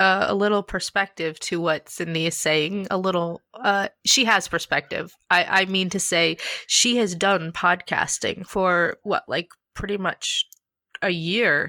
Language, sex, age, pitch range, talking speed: English, female, 30-49, 180-205 Hz, 160 wpm